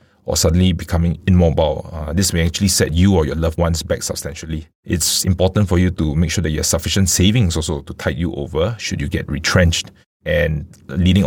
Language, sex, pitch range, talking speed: English, male, 80-95 Hz, 210 wpm